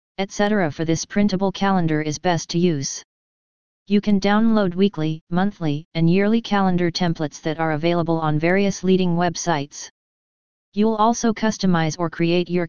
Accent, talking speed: American, 145 wpm